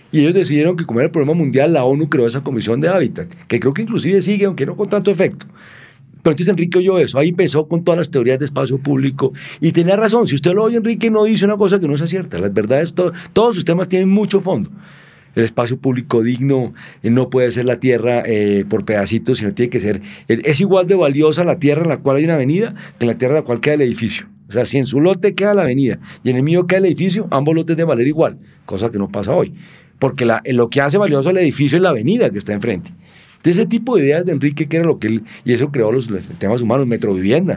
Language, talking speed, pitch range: Spanish, 260 wpm, 130-185 Hz